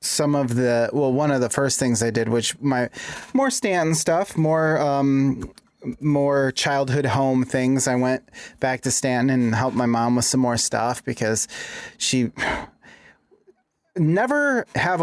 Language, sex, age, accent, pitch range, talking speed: English, male, 30-49, American, 125-155 Hz, 155 wpm